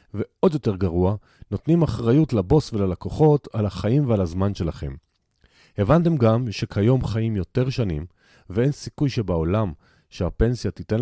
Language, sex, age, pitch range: Hebrew, male, 40-59, 95-125 Hz